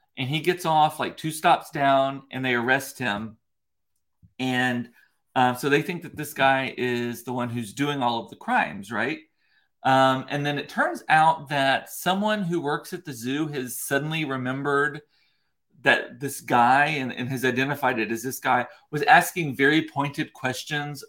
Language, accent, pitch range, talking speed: English, American, 125-155 Hz, 175 wpm